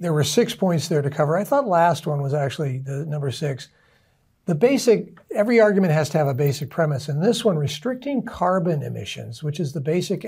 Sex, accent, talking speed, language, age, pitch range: male, American, 210 wpm, English, 60-79, 150-190 Hz